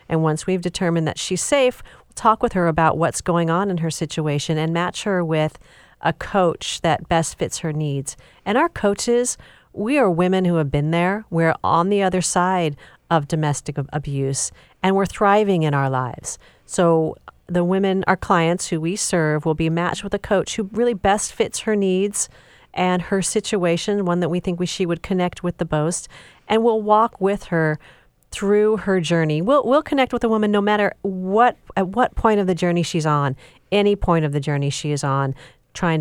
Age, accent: 40-59, American